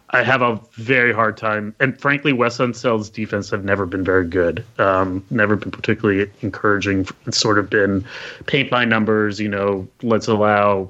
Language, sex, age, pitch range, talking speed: English, male, 30-49, 105-125 Hz, 175 wpm